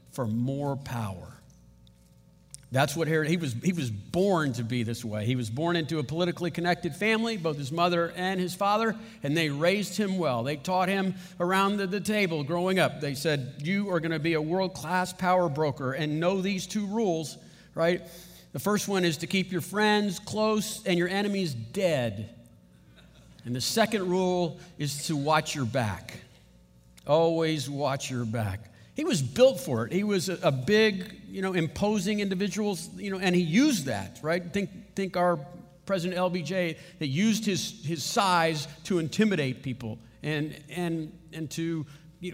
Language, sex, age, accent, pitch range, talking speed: English, male, 50-69, American, 145-190 Hz, 175 wpm